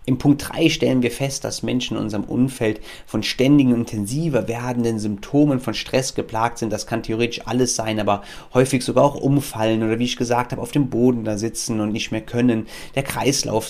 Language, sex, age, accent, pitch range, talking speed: German, male, 30-49, German, 100-125 Hz, 200 wpm